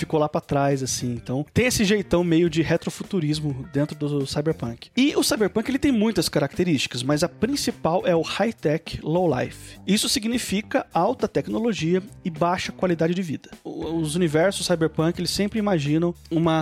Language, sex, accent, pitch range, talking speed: Portuguese, male, Brazilian, 160-210 Hz, 170 wpm